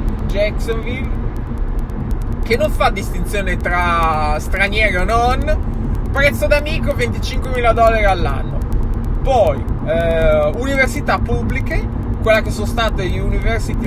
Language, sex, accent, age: Italian, male, native, 20-39